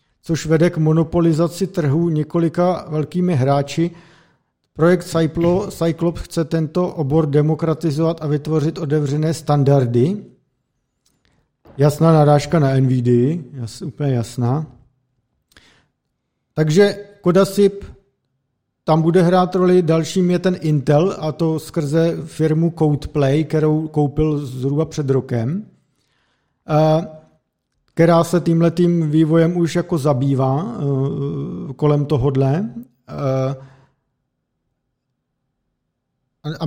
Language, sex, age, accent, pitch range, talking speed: Czech, male, 50-69, native, 140-165 Hz, 95 wpm